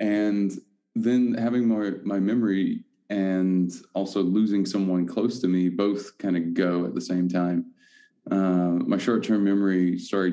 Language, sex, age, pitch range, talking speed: English, male, 20-39, 90-105 Hz, 150 wpm